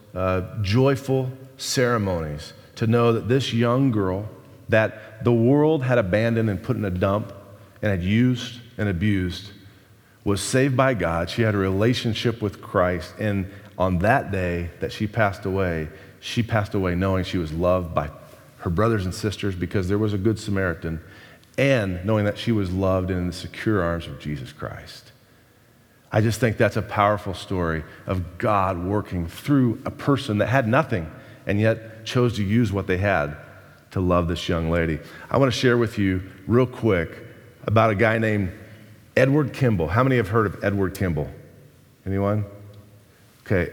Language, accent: English, American